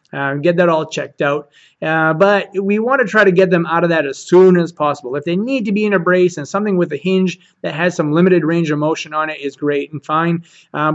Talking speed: 270 wpm